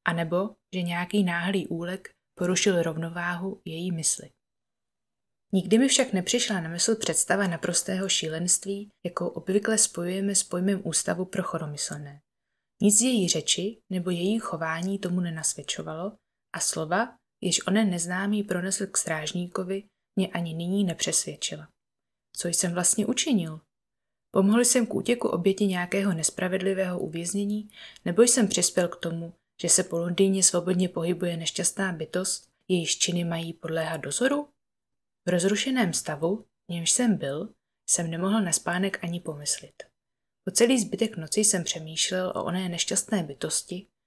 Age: 20-39